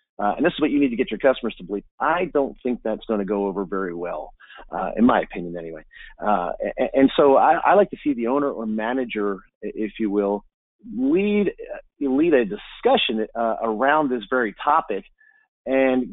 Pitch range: 105-145 Hz